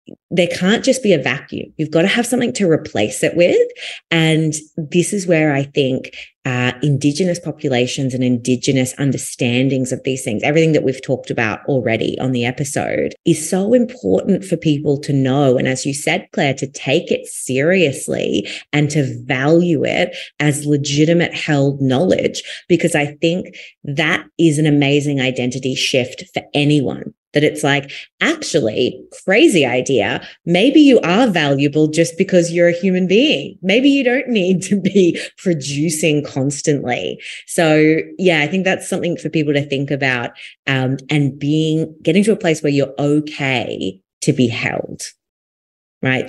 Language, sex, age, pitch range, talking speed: English, female, 20-39, 135-175 Hz, 160 wpm